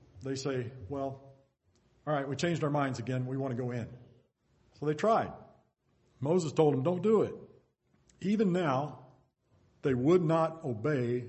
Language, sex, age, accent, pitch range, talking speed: English, male, 50-69, American, 120-150 Hz, 160 wpm